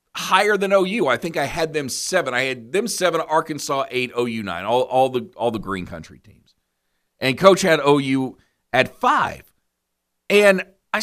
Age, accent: 40-59, American